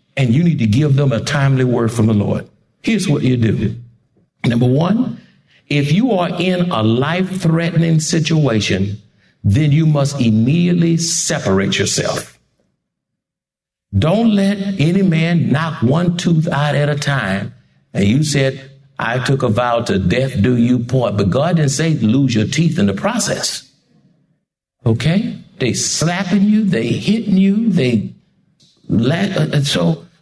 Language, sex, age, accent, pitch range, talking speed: English, male, 60-79, American, 125-185 Hz, 150 wpm